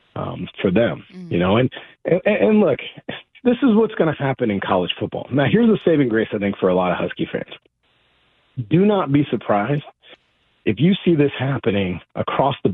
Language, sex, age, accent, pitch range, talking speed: English, male, 40-59, American, 110-175 Hz, 200 wpm